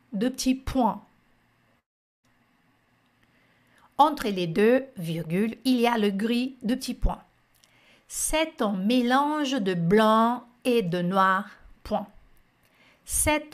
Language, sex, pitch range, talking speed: French, female, 195-260 Hz, 110 wpm